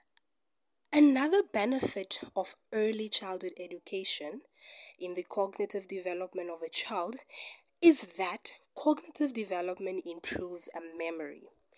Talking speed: 100 wpm